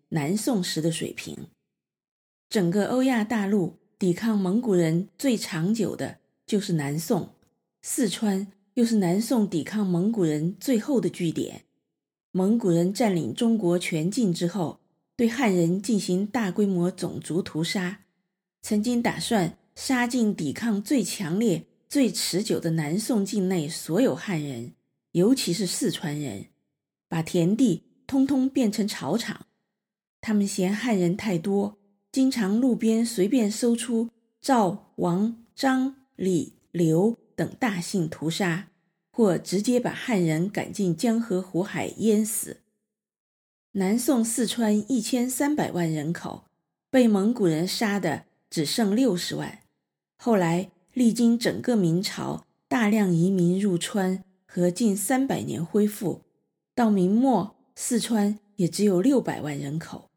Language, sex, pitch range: Chinese, female, 175-230 Hz